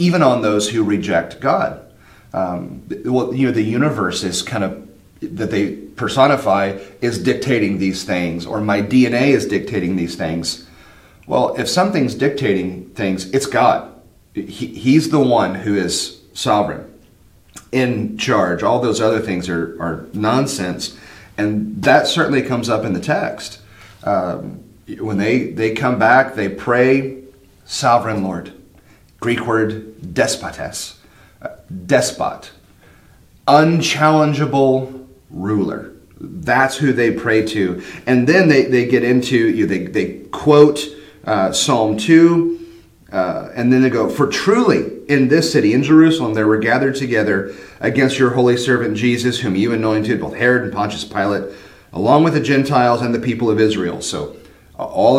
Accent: American